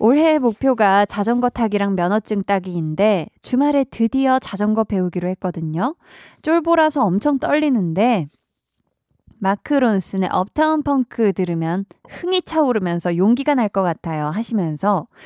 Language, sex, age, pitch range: Korean, female, 20-39, 185-280 Hz